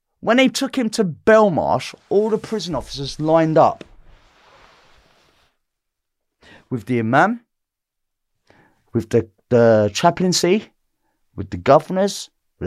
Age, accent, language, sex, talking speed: 40-59, British, English, male, 110 wpm